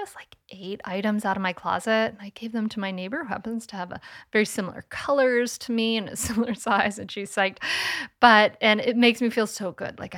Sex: female